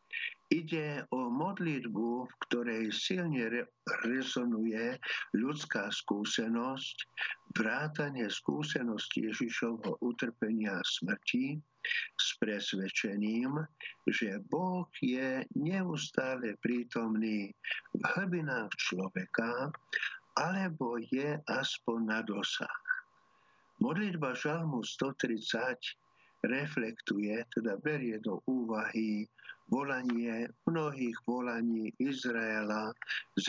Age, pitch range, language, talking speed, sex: 50-69, 115-145 Hz, Slovak, 75 wpm, male